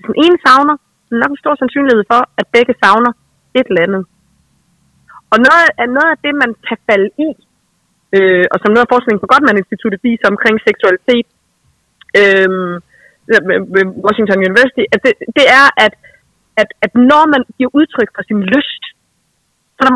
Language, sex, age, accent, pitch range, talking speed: Danish, female, 30-49, native, 205-265 Hz, 175 wpm